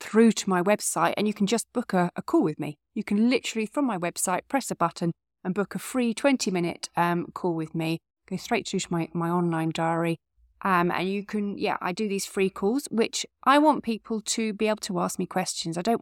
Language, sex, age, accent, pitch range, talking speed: English, female, 30-49, British, 175-220 Hz, 235 wpm